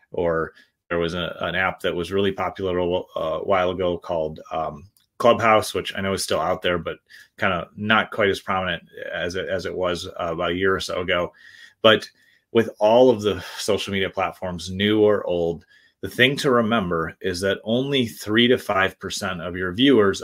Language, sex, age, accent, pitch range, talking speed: English, male, 30-49, American, 90-105 Hz, 190 wpm